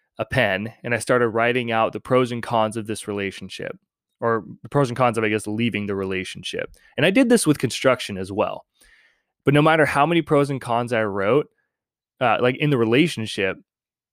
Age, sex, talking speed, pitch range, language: 20-39, male, 205 wpm, 110-135 Hz, English